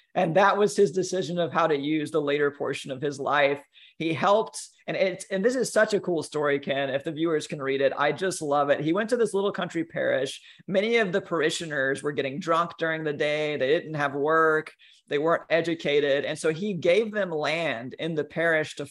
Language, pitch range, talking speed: English, 145-185 Hz, 225 wpm